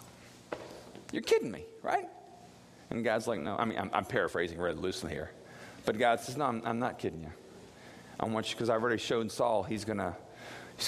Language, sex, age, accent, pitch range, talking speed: English, male, 40-59, American, 105-160 Hz, 190 wpm